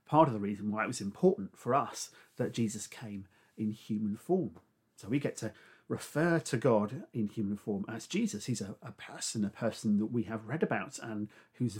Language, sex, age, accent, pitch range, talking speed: English, male, 40-59, British, 110-150 Hz, 210 wpm